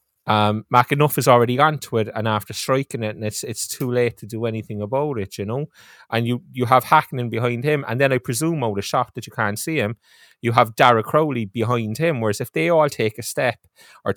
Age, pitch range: 20-39, 110-130 Hz